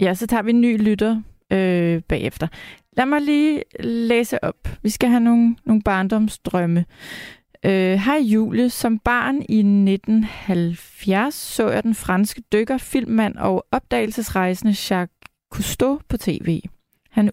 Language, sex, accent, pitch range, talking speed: Danish, female, native, 185-230 Hz, 140 wpm